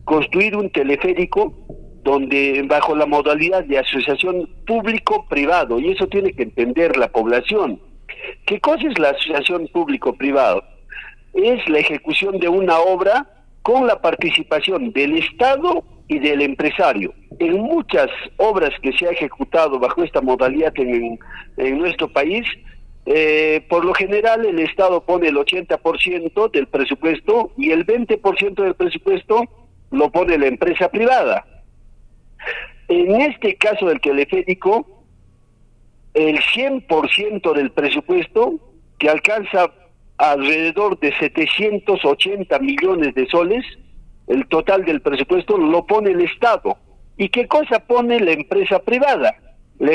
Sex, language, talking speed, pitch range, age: male, Spanish, 125 wpm, 150-225 Hz, 50-69